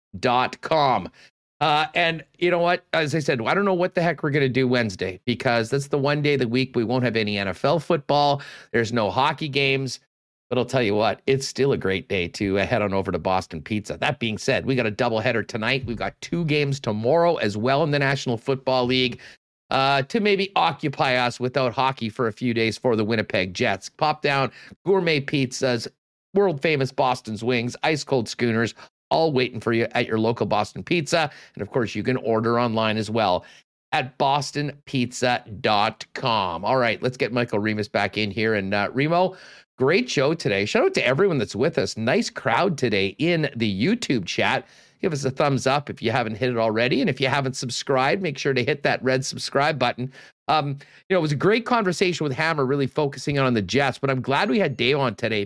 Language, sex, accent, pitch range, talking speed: English, male, American, 115-145 Hz, 215 wpm